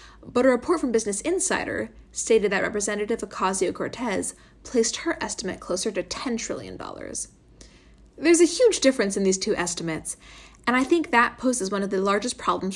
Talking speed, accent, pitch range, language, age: 165 wpm, American, 190-255 Hz, English, 10-29